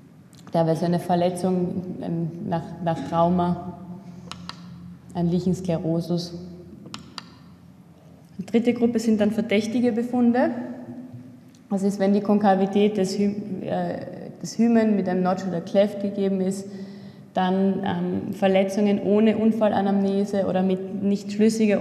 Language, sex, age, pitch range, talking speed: German, female, 20-39, 180-200 Hz, 110 wpm